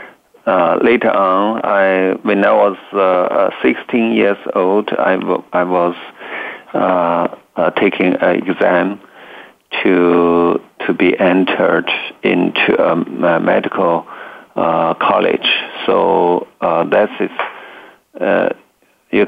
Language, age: English, 50-69